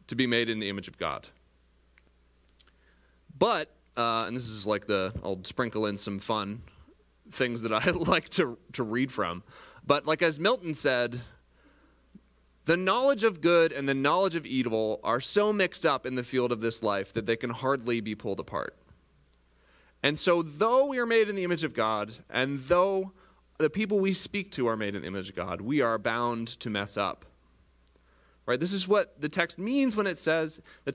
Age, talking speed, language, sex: 30-49, 195 wpm, English, male